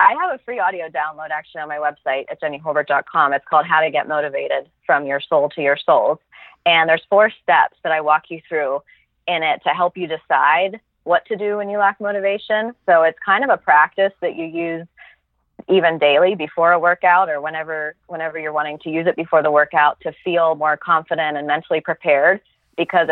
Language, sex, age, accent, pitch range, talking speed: English, female, 30-49, American, 150-170 Hz, 205 wpm